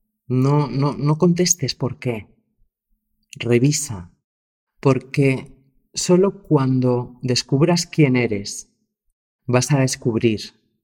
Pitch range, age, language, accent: 110-145 Hz, 40-59, Spanish, Spanish